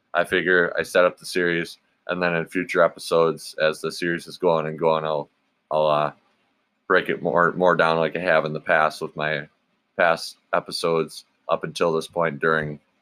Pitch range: 80-95 Hz